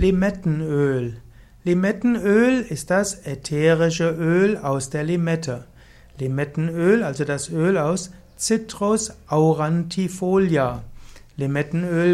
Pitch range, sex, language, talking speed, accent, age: 145-175 Hz, male, German, 85 wpm, German, 60-79